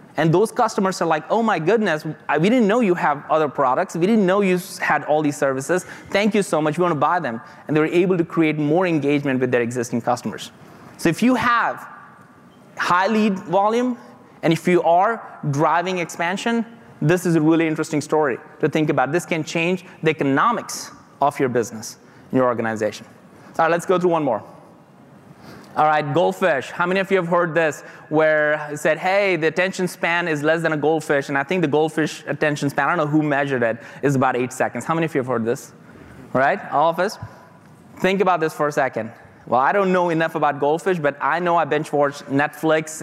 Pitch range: 145-180 Hz